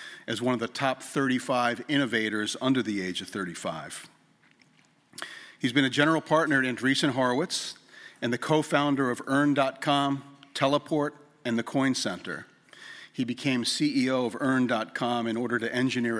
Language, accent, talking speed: English, American, 145 wpm